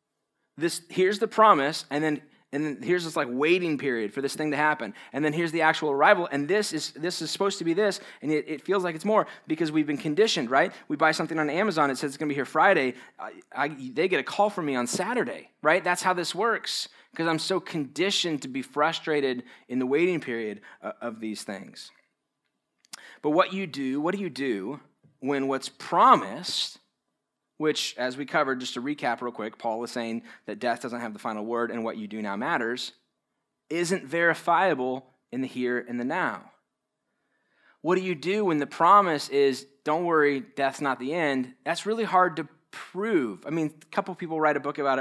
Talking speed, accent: 215 wpm, American